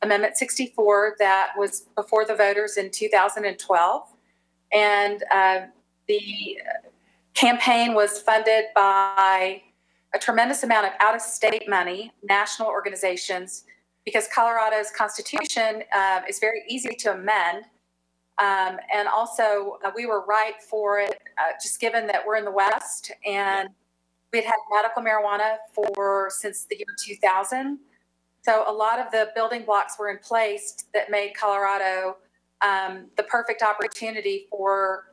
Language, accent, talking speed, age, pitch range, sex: English, American, 140 wpm, 40-59, 195-220 Hz, female